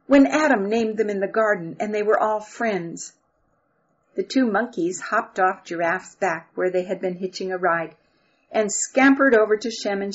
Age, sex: 50-69, female